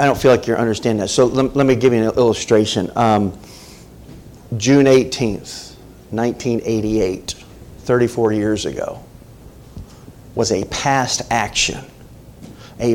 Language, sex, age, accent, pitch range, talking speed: English, male, 40-59, American, 105-140 Hz, 125 wpm